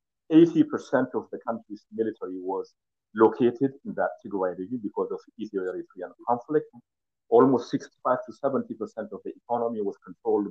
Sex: male